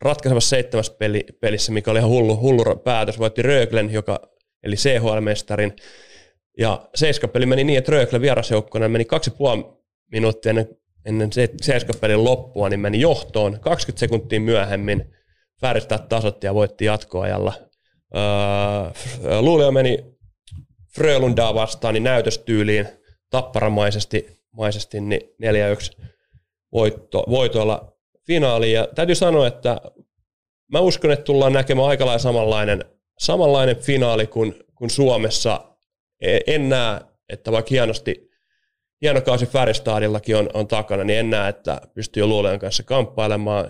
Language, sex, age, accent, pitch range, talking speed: Finnish, male, 30-49, native, 105-125 Hz, 120 wpm